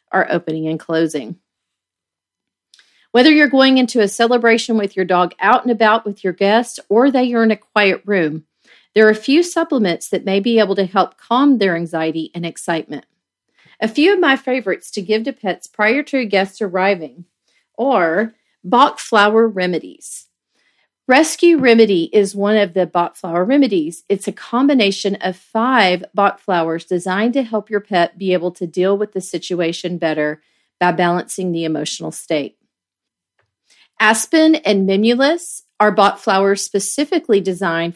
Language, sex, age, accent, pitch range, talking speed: English, female, 40-59, American, 180-235 Hz, 160 wpm